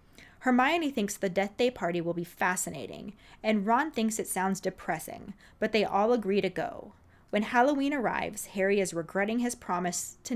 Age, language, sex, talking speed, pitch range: 20-39, English, female, 175 wpm, 180-230 Hz